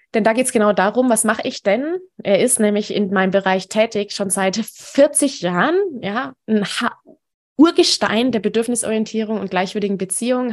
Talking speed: 165 wpm